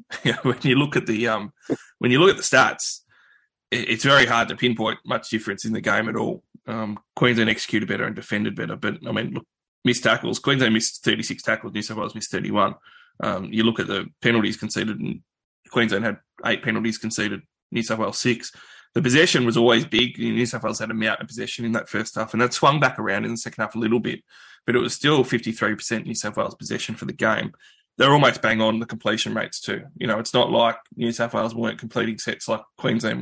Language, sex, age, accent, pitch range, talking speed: English, male, 20-39, Australian, 110-120 Hz, 235 wpm